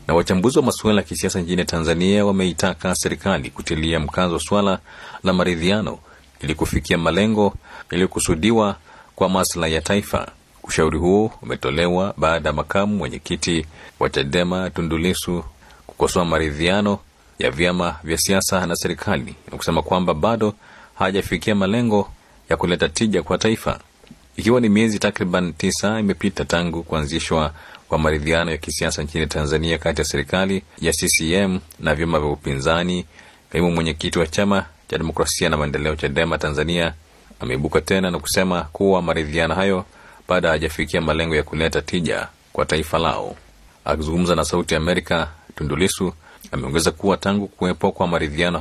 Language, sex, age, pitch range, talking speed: Swahili, male, 40-59, 80-95 Hz, 140 wpm